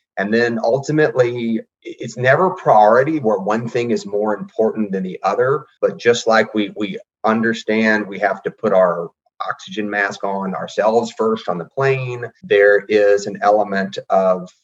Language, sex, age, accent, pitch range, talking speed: English, male, 30-49, American, 100-130 Hz, 160 wpm